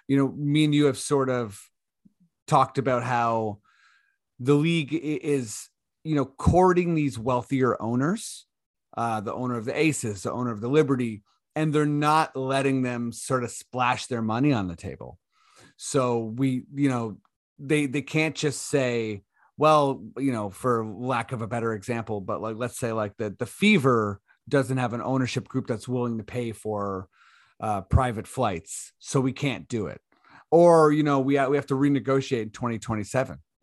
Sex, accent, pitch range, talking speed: male, American, 115-140 Hz, 175 wpm